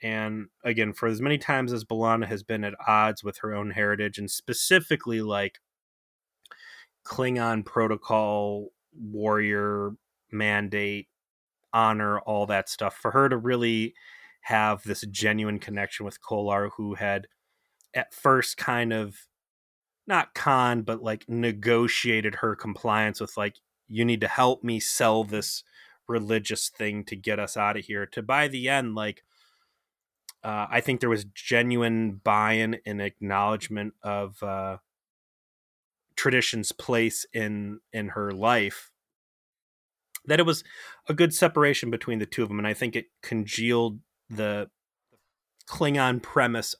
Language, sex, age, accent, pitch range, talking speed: English, male, 30-49, American, 105-120 Hz, 140 wpm